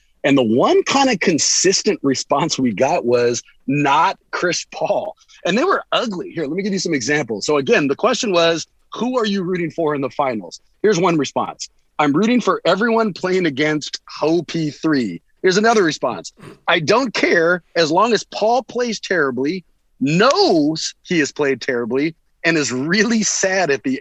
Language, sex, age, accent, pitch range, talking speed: English, male, 40-59, American, 160-240 Hz, 175 wpm